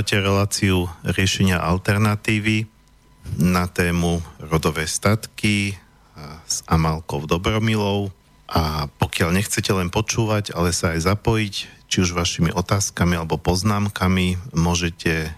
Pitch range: 85-95 Hz